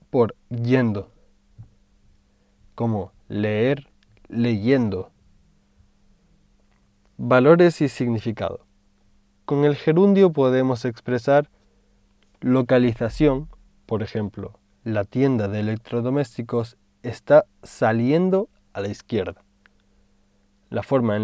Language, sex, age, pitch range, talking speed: Spanish, male, 20-39, 100-135 Hz, 80 wpm